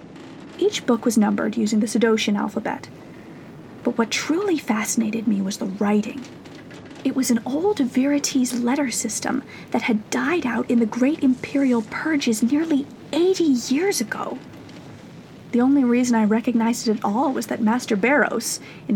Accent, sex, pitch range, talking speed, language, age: American, female, 215-275 Hz, 155 wpm, English, 30-49